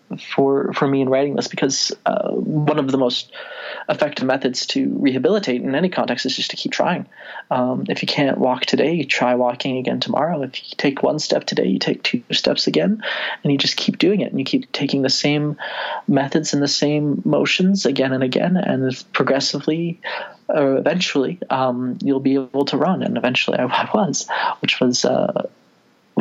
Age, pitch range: 20-39, 130-150 Hz